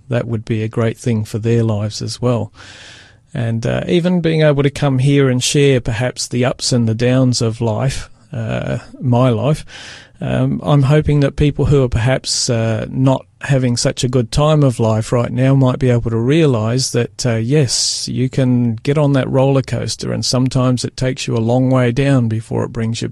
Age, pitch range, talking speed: 40-59, 115-130 Hz, 205 wpm